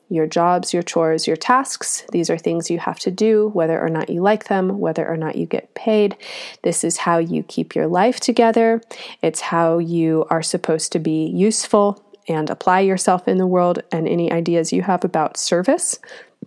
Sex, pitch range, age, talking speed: female, 170-215 Hz, 30-49, 195 wpm